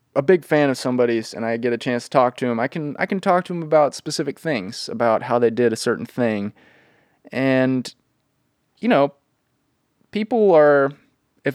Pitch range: 120-150 Hz